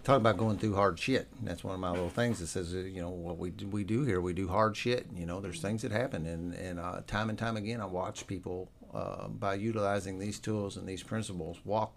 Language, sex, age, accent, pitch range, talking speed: English, male, 50-69, American, 90-110 Hz, 255 wpm